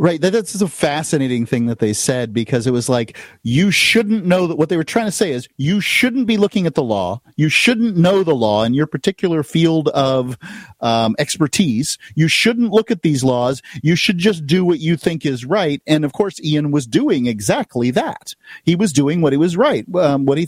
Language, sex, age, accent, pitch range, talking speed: English, male, 40-59, American, 120-165 Hz, 220 wpm